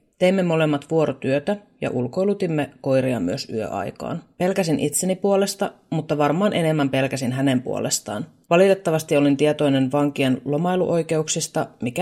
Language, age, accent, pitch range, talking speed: Finnish, 30-49, native, 135-175 Hz, 115 wpm